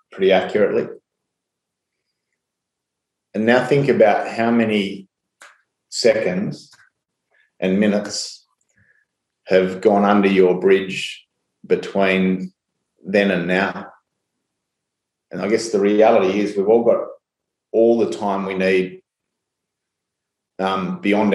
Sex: male